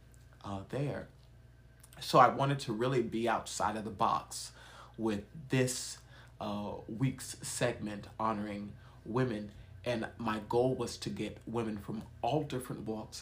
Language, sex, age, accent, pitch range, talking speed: English, male, 30-49, American, 110-120 Hz, 135 wpm